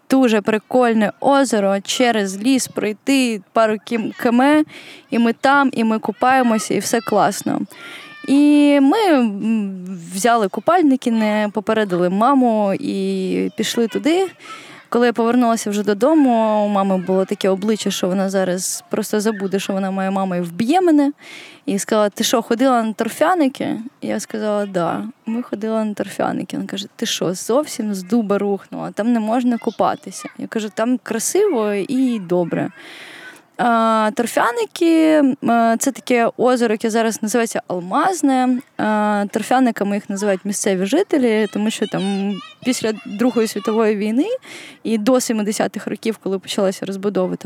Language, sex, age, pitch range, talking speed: Ukrainian, female, 20-39, 205-255 Hz, 140 wpm